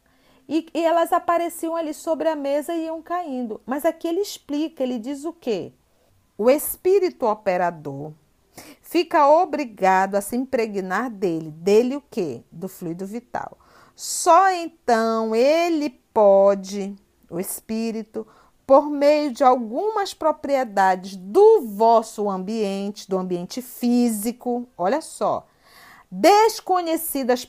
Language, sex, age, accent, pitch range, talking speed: Portuguese, female, 50-69, Brazilian, 205-315 Hz, 120 wpm